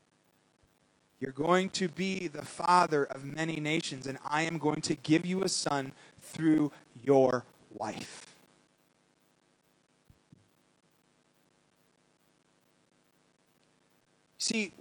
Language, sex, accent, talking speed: English, male, American, 90 wpm